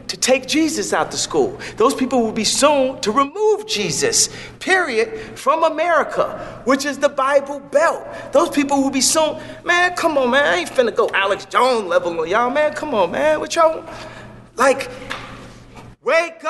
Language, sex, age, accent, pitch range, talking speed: English, male, 40-59, American, 265-330 Hz, 175 wpm